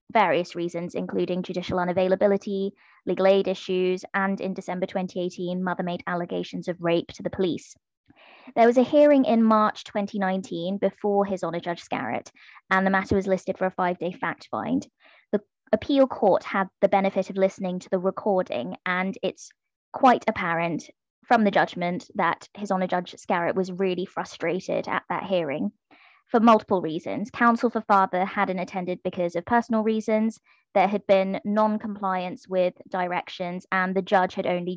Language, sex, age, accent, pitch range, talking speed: English, female, 20-39, British, 180-215 Hz, 160 wpm